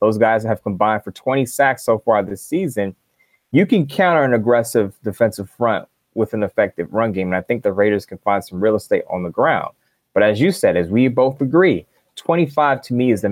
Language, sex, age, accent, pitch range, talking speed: English, male, 20-39, American, 105-145 Hz, 220 wpm